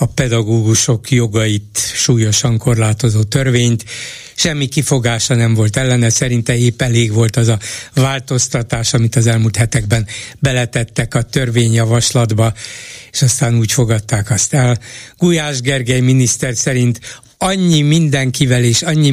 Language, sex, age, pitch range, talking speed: Hungarian, male, 60-79, 120-145 Hz, 120 wpm